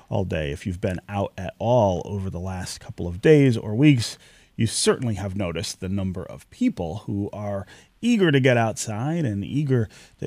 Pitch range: 100-140 Hz